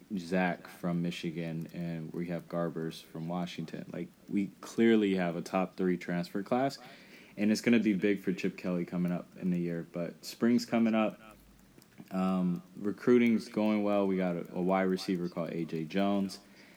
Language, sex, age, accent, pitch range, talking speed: English, male, 20-39, American, 85-100 Hz, 175 wpm